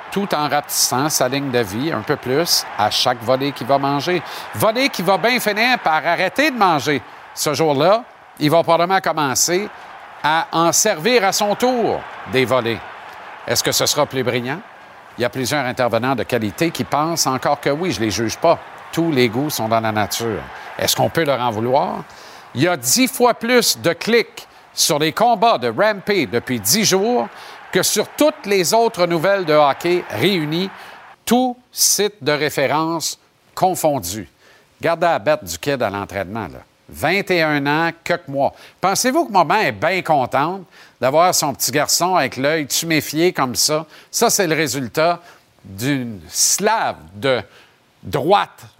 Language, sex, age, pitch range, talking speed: French, male, 50-69, 125-175 Hz, 170 wpm